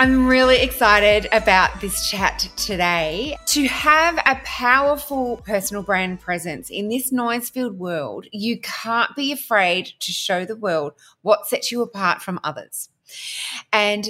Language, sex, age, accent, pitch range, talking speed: English, female, 30-49, Australian, 190-255 Hz, 140 wpm